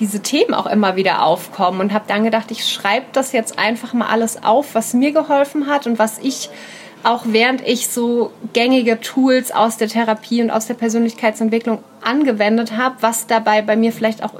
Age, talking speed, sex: 30-49, 190 wpm, female